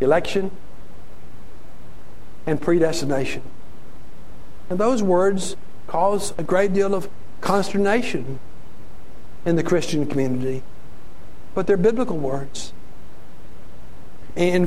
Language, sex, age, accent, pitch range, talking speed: English, male, 60-79, American, 170-235 Hz, 85 wpm